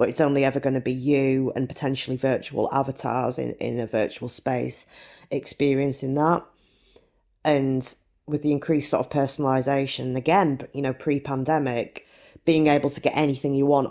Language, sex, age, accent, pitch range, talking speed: English, female, 20-39, British, 125-145 Hz, 155 wpm